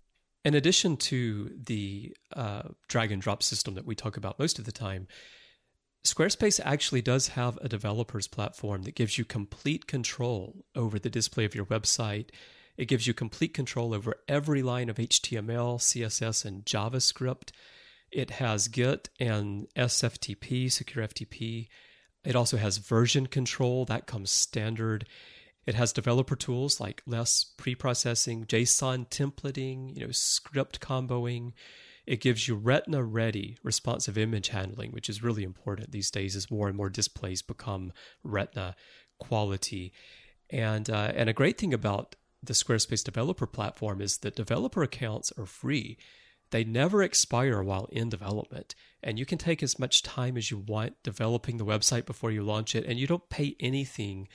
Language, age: English, 30-49